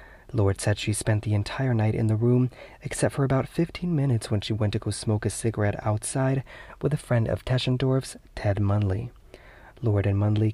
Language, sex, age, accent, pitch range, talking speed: English, male, 30-49, American, 105-130 Hz, 195 wpm